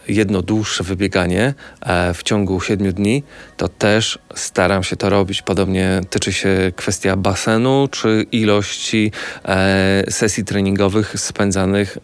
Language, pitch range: Polish, 95-110 Hz